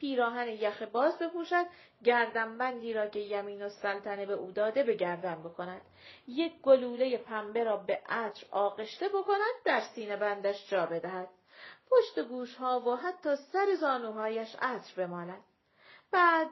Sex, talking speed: female, 145 wpm